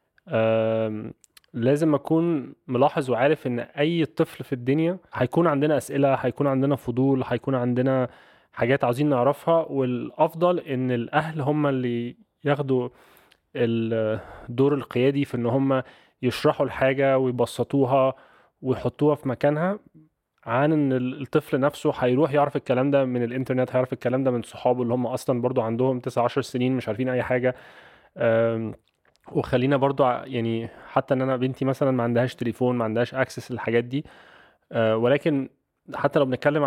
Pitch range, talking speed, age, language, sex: 120-140 Hz, 135 wpm, 20-39, Arabic, male